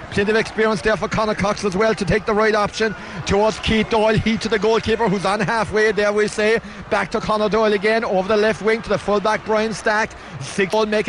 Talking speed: 225 wpm